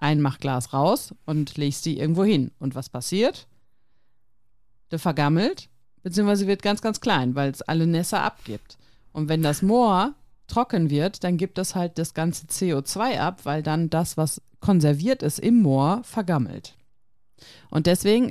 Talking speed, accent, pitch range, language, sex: 155 wpm, German, 140-195 Hz, German, female